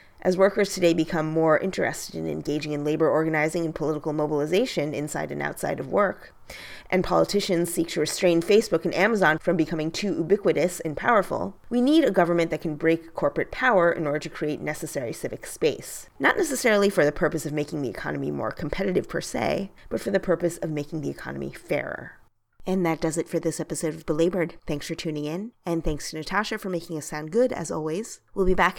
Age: 30-49